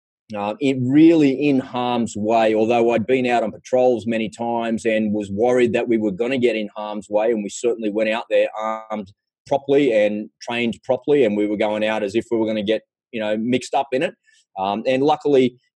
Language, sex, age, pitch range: English, male, 20-39, 110-135 Hz